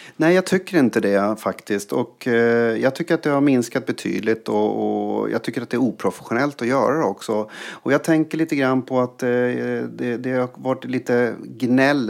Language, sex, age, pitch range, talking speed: English, male, 30-49, 110-135 Hz, 205 wpm